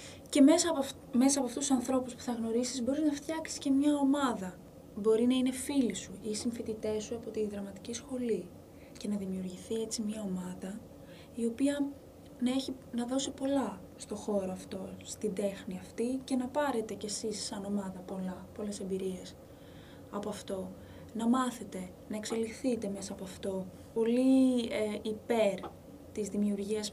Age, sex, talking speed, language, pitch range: 20-39, female, 160 wpm, Greek, 210-255 Hz